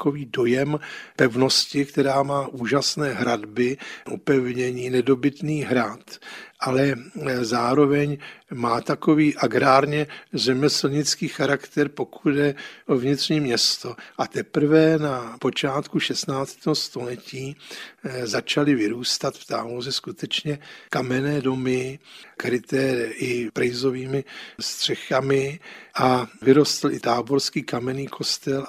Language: Czech